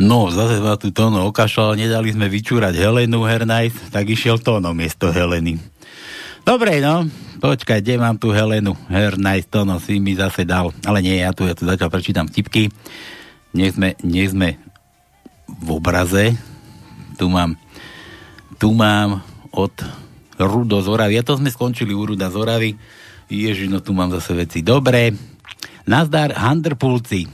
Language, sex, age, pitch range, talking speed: Slovak, male, 60-79, 95-125 Hz, 150 wpm